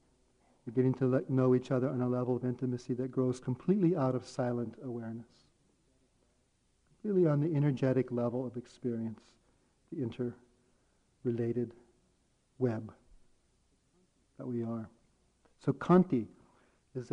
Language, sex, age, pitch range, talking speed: English, male, 50-69, 120-135 Hz, 120 wpm